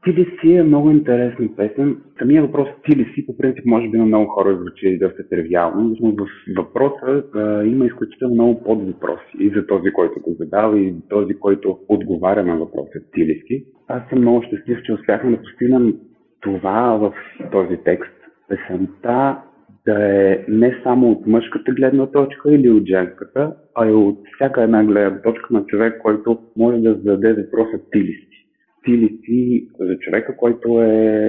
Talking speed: 160 wpm